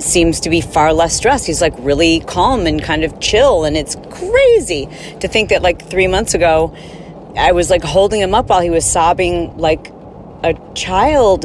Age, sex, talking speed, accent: 40-59, female, 195 wpm, American